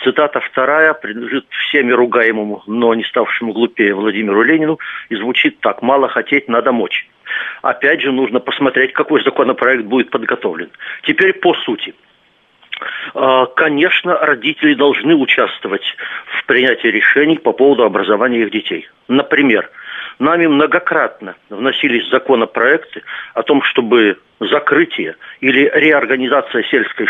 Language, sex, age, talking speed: Russian, male, 50-69, 115 wpm